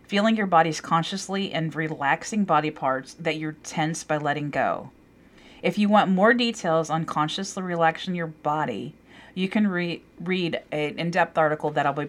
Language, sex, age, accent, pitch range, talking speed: English, female, 40-59, American, 155-185 Hz, 165 wpm